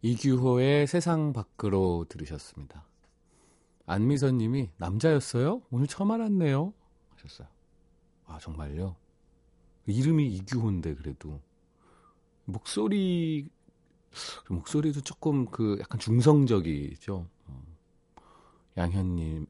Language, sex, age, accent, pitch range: Korean, male, 40-59, native, 85-130 Hz